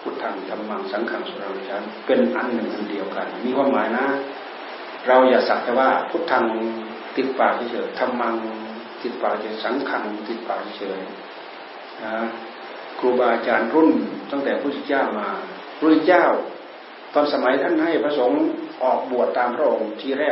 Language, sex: Thai, male